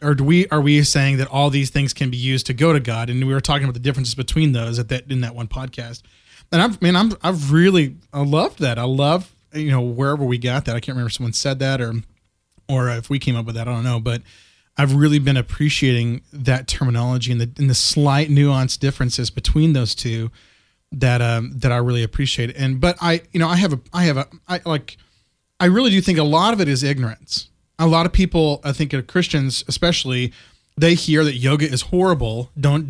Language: English